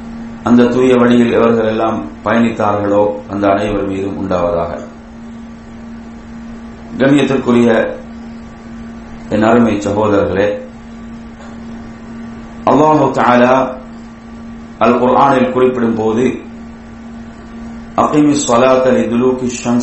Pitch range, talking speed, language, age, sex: 110-125 Hz, 70 wpm, English, 30-49, male